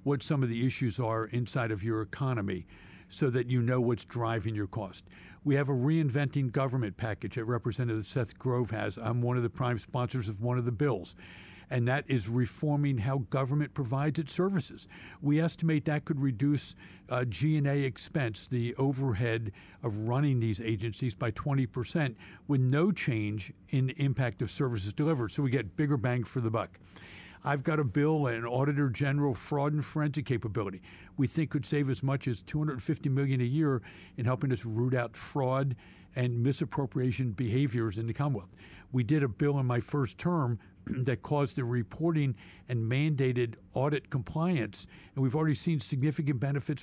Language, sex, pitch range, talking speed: English, male, 115-145 Hz, 175 wpm